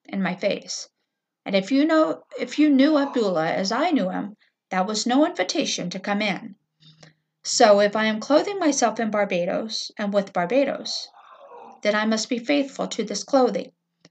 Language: English